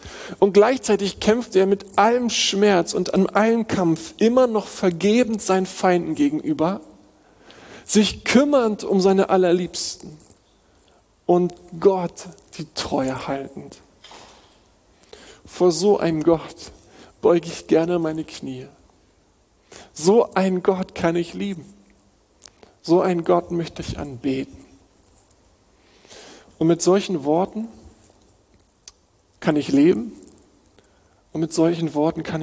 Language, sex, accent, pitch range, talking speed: German, male, German, 135-200 Hz, 110 wpm